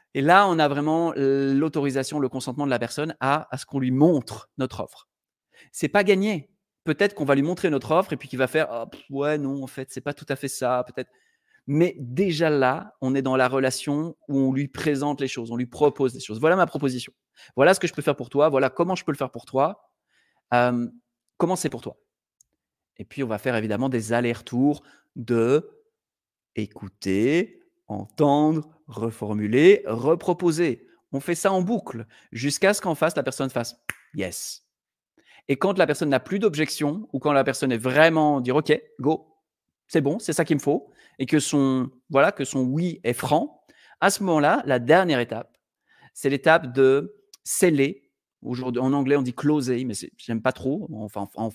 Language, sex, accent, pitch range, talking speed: French, male, French, 130-165 Hz, 210 wpm